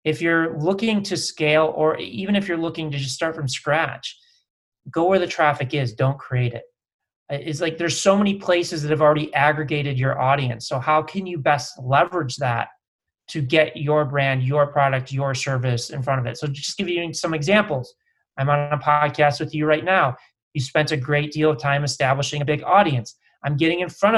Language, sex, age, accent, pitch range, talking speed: English, male, 30-49, American, 140-160 Hz, 205 wpm